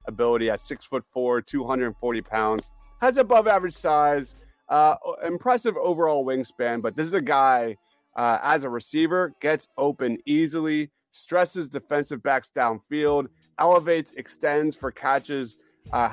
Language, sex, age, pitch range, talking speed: English, male, 30-49, 120-145 Hz, 135 wpm